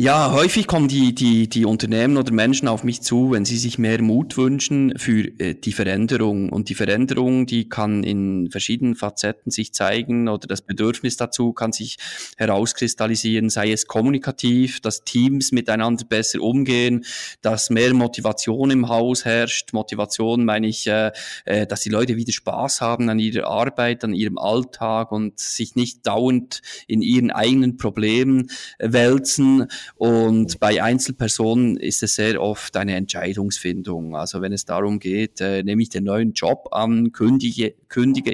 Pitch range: 110-125 Hz